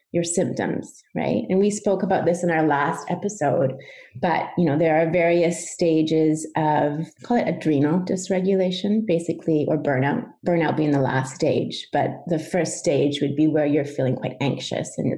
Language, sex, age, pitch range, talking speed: English, female, 30-49, 150-180 Hz, 175 wpm